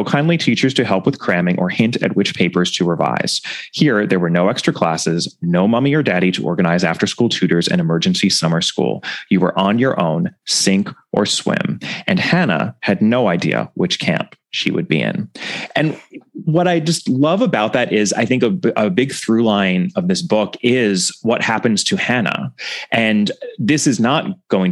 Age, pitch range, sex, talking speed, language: 30-49, 95-135 Hz, male, 190 wpm, English